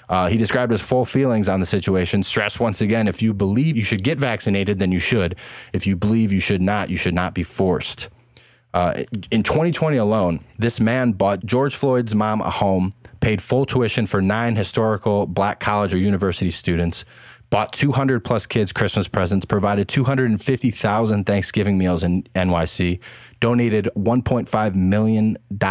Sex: male